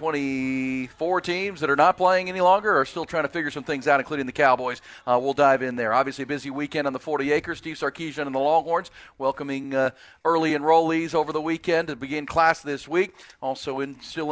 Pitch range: 130-155 Hz